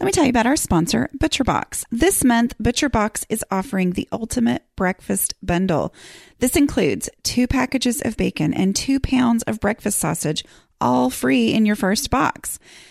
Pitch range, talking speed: 170-255 Hz, 170 wpm